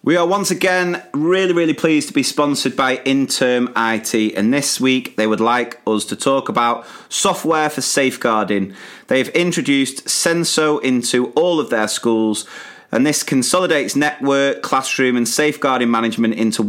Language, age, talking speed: English, 30-49, 155 wpm